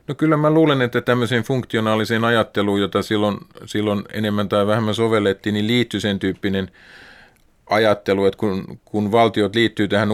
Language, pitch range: Finnish, 95-110 Hz